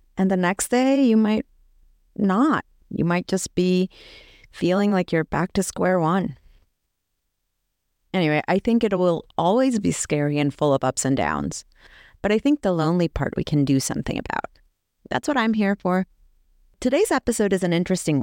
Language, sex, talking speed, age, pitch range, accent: English, female, 175 wpm, 30-49, 160-210 Hz, American